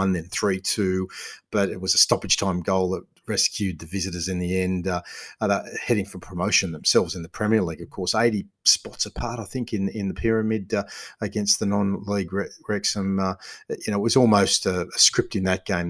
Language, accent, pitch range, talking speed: English, Australian, 90-105 Hz, 205 wpm